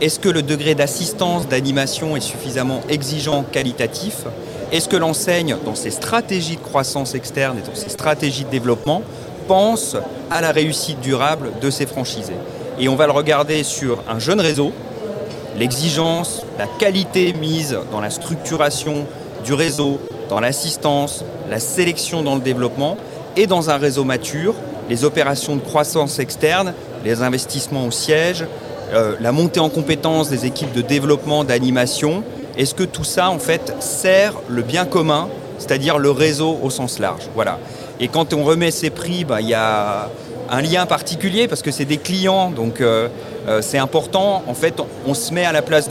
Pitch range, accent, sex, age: 130-160 Hz, French, male, 40-59